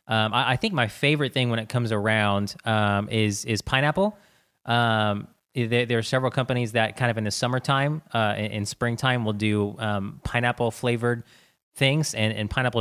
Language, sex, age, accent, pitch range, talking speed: English, male, 20-39, American, 105-125 Hz, 185 wpm